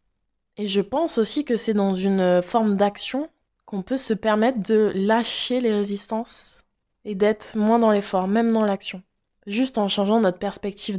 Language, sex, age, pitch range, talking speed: French, female, 20-39, 180-210 Hz, 170 wpm